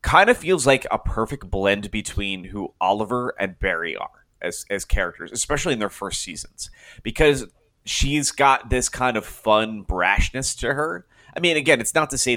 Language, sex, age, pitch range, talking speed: English, male, 30-49, 95-120 Hz, 185 wpm